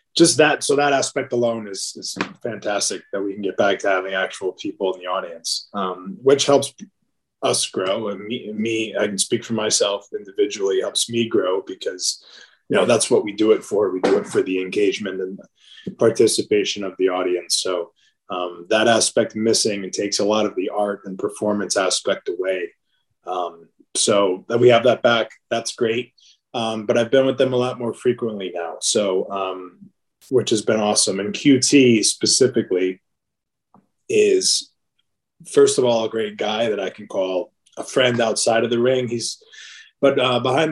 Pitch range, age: 105-150 Hz, 20-39